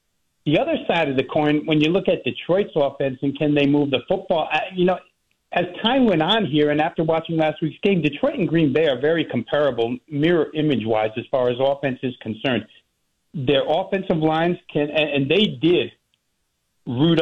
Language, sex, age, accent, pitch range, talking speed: English, male, 50-69, American, 130-160 Hz, 190 wpm